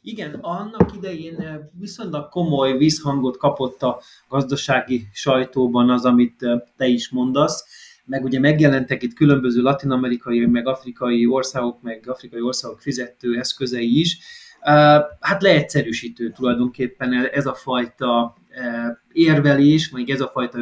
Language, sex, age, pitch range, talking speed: Hungarian, male, 30-49, 125-160 Hz, 120 wpm